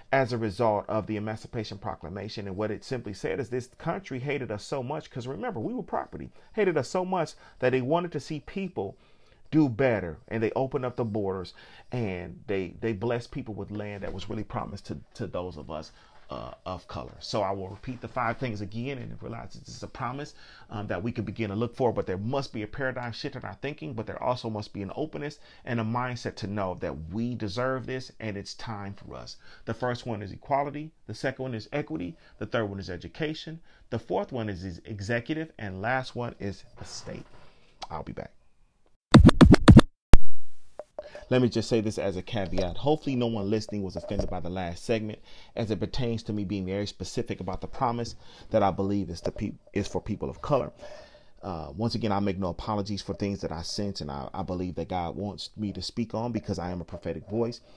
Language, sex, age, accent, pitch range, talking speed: English, male, 40-59, American, 95-125 Hz, 220 wpm